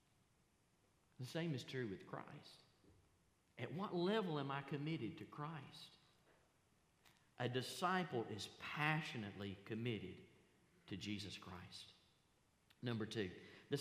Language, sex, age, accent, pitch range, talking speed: English, male, 50-69, American, 115-155 Hz, 110 wpm